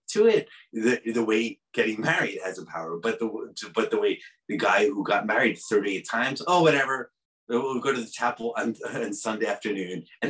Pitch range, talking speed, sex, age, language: 105-180 Hz, 190 wpm, male, 30-49, English